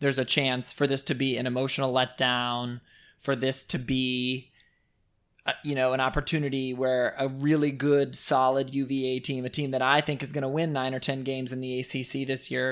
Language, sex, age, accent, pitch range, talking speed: English, male, 20-39, American, 130-160 Hz, 205 wpm